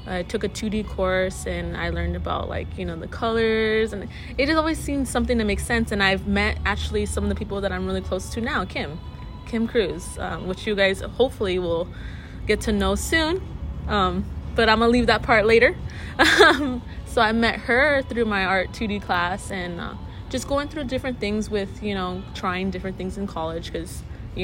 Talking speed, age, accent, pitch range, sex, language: 210 wpm, 20-39, American, 135-220 Hz, female, English